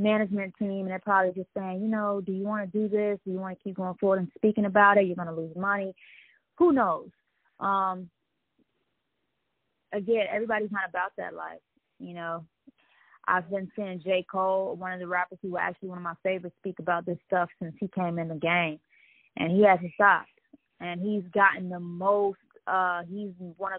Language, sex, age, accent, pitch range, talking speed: English, female, 20-39, American, 175-205 Hz, 200 wpm